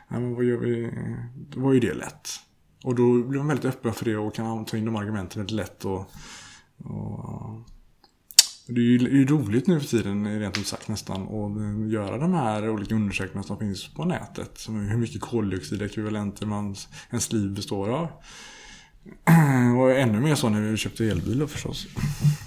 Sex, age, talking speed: male, 20-39, 185 wpm